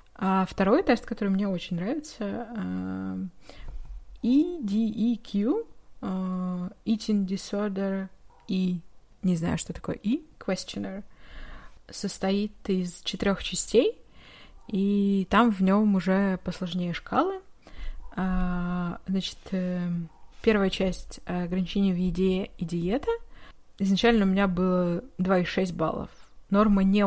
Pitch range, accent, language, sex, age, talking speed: 180-210 Hz, native, Russian, female, 20-39, 95 wpm